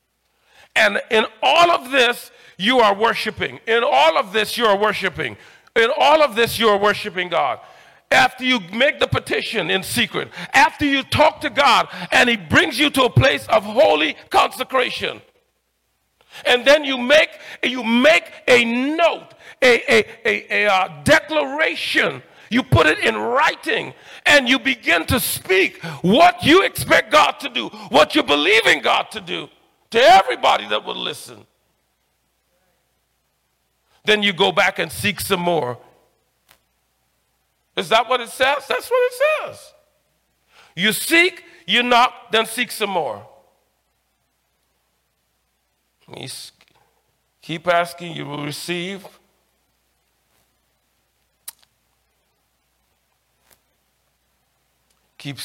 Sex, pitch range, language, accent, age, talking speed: male, 175-290 Hz, English, American, 40-59, 130 wpm